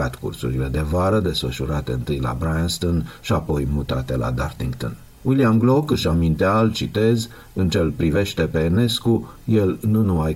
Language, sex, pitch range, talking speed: Romanian, male, 70-95 Hz, 155 wpm